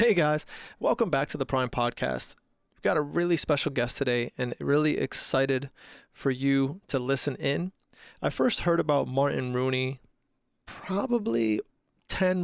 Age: 30-49